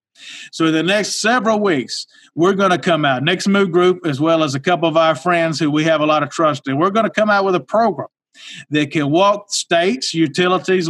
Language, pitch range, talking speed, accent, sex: English, 150-200 Hz, 235 wpm, American, male